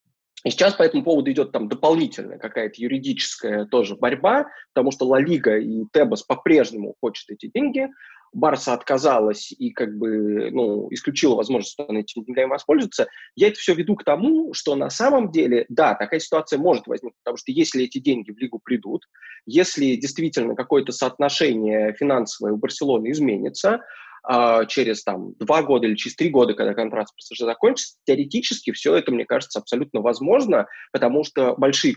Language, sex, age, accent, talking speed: Russian, male, 20-39, native, 165 wpm